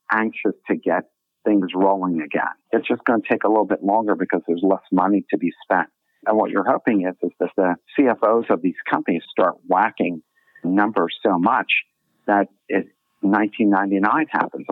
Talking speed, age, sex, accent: 175 wpm, 50-69, male, American